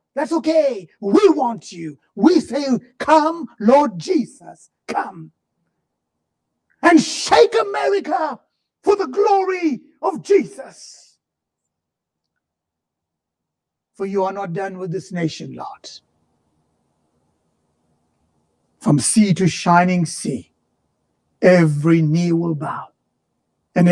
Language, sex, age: English, male, 60-79